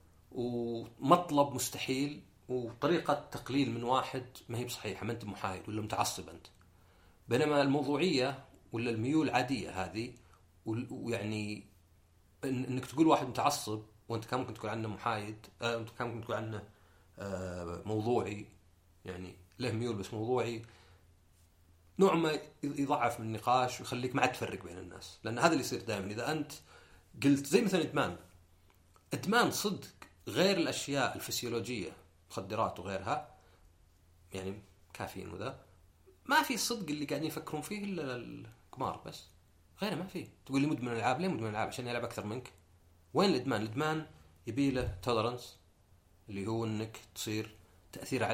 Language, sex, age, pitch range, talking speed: Arabic, male, 40-59, 90-125 Hz, 140 wpm